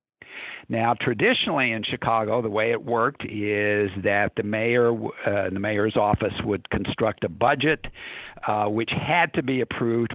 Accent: American